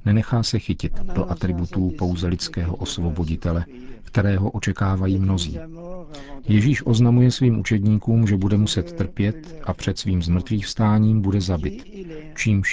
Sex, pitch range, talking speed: male, 90-110 Hz, 125 wpm